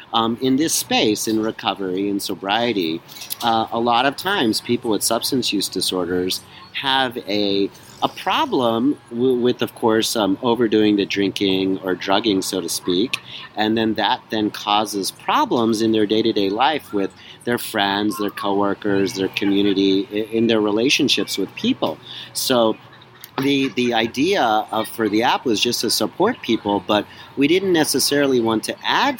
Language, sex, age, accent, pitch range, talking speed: English, male, 40-59, American, 105-120 Hz, 160 wpm